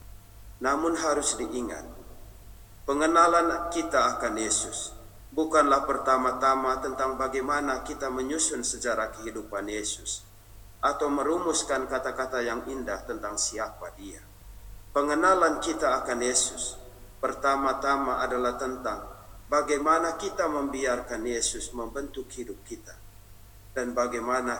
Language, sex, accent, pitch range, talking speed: Indonesian, male, native, 105-140 Hz, 100 wpm